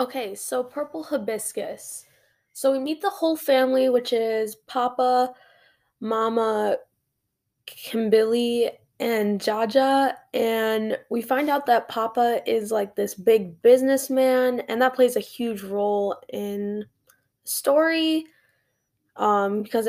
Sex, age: female, 10-29